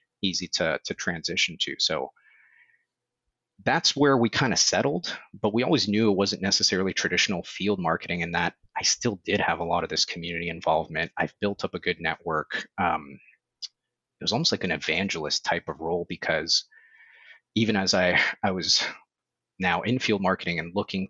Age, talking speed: 30-49, 175 wpm